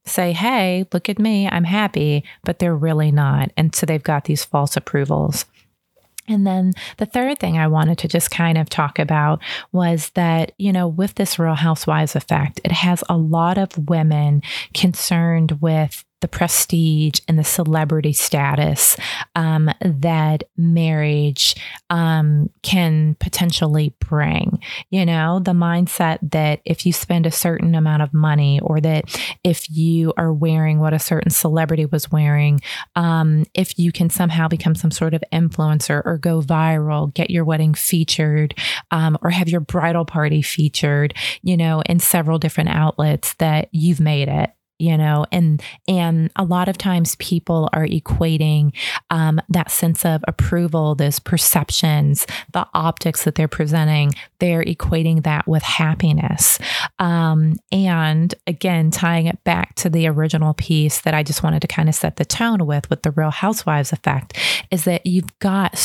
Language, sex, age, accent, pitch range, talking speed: English, female, 30-49, American, 155-175 Hz, 160 wpm